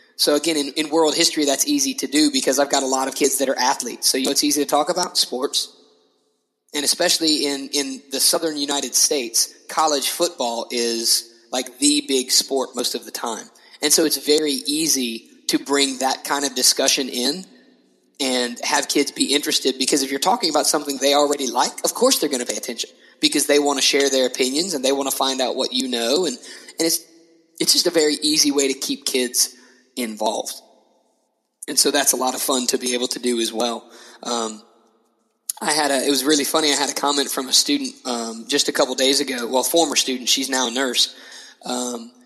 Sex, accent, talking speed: male, American, 215 wpm